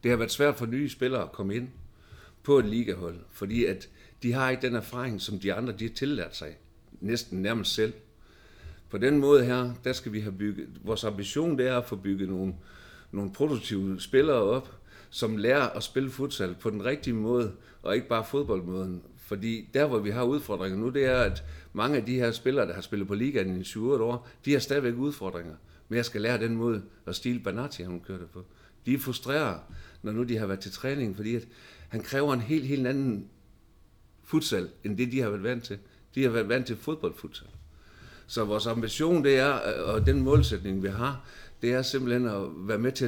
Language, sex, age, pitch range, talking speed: Danish, male, 60-79, 95-125 Hz, 210 wpm